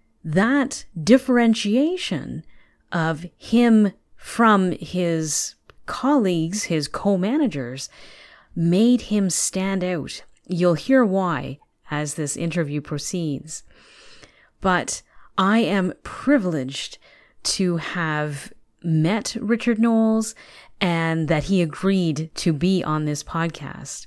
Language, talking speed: English, 95 wpm